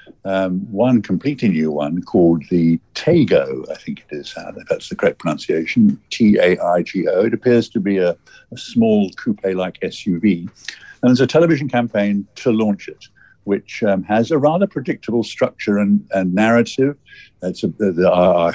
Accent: British